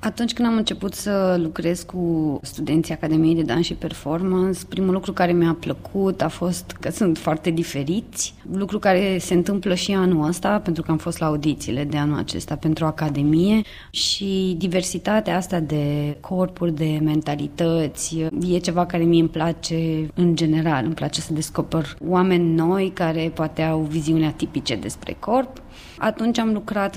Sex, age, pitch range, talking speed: female, 20-39, 160-190 Hz, 160 wpm